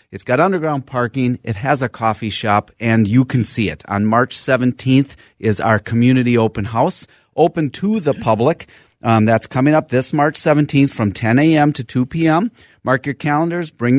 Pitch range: 115-145 Hz